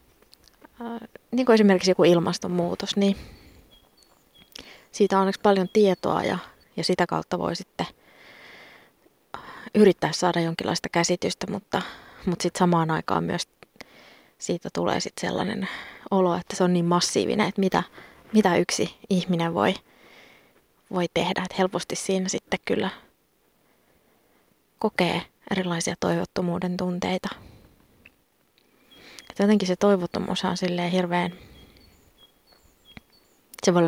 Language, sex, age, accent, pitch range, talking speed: Finnish, female, 20-39, native, 175-195 Hz, 105 wpm